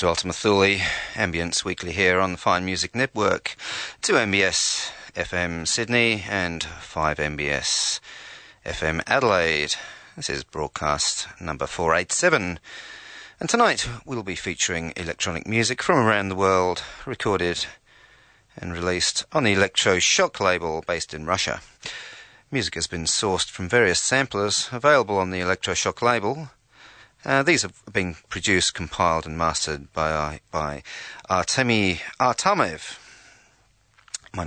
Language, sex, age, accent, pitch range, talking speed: English, male, 40-59, British, 85-110 Hz, 125 wpm